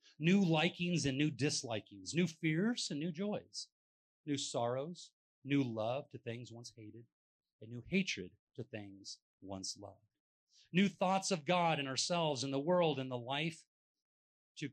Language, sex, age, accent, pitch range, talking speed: English, male, 30-49, American, 125-175 Hz, 155 wpm